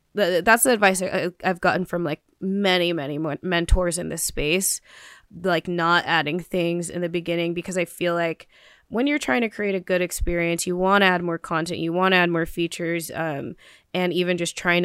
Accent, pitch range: American, 170-185 Hz